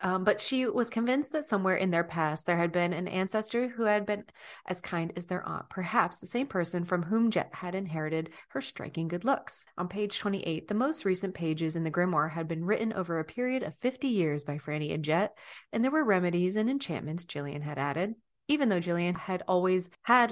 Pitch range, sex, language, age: 165-215 Hz, female, English, 20-39